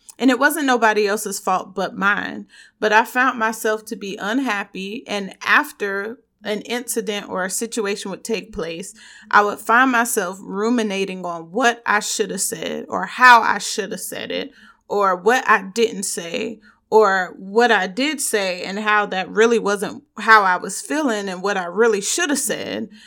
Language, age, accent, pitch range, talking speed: English, 30-49, American, 205-240 Hz, 180 wpm